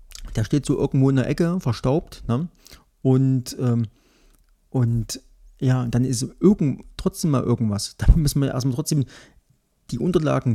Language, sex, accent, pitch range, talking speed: German, male, German, 115-145 Hz, 150 wpm